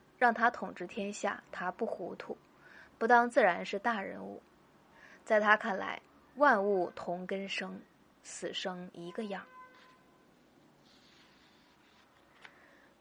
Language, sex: Chinese, female